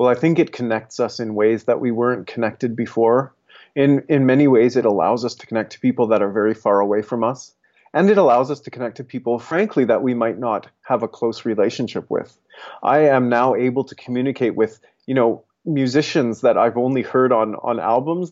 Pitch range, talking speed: 110-140 Hz, 215 wpm